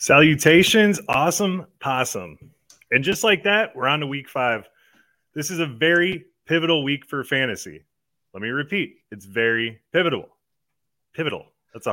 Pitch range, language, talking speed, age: 120-160 Hz, English, 145 wpm, 30-49